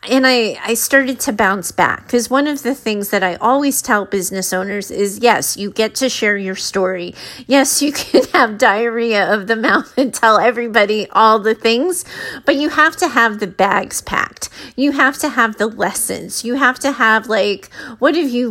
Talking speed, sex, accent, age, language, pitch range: 200 wpm, female, American, 30-49, English, 205-260 Hz